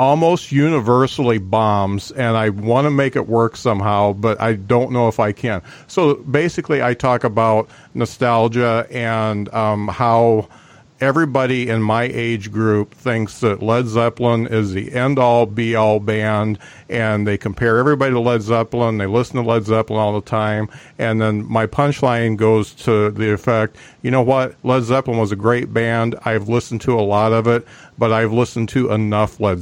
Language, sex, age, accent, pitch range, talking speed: English, male, 50-69, American, 110-135 Hz, 175 wpm